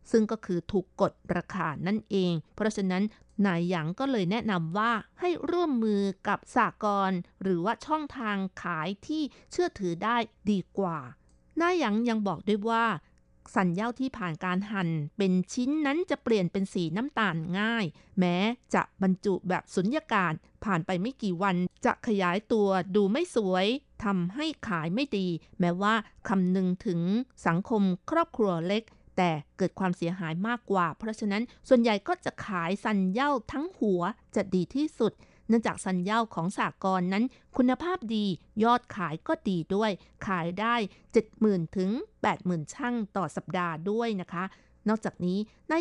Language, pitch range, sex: Thai, 180-230 Hz, female